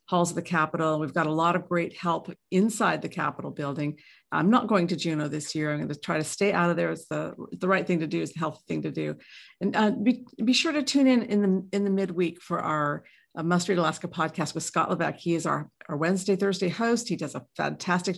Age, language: 50-69, English